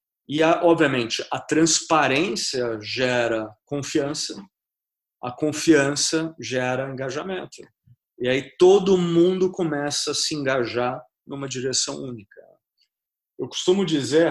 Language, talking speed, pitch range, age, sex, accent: Portuguese, 100 wpm, 120-155 Hz, 40-59, male, Brazilian